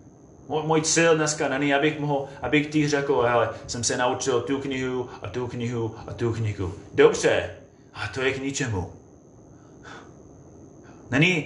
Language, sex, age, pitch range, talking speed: Czech, male, 30-49, 135-165 Hz, 140 wpm